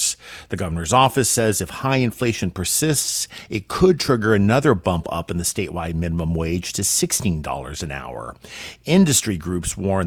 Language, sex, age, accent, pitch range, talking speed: English, male, 50-69, American, 105-130 Hz, 155 wpm